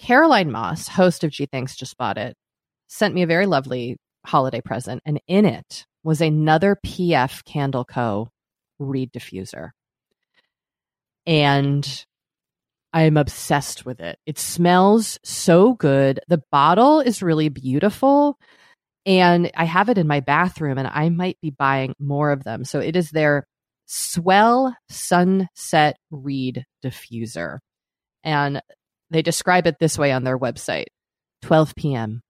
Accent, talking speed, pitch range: American, 140 wpm, 135-170 Hz